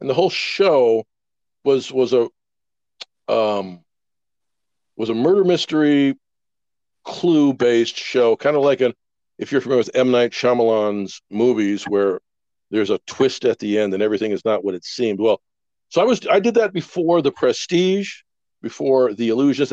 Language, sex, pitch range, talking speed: English, male, 105-145 Hz, 165 wpm